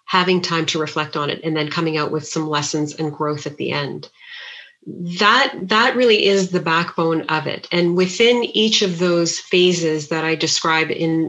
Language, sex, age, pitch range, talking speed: English, female, 30-49, 160-185 Hz, 190 wpm